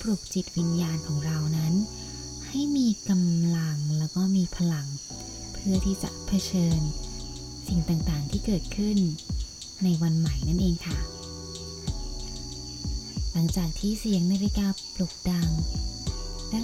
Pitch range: 145-185 Hz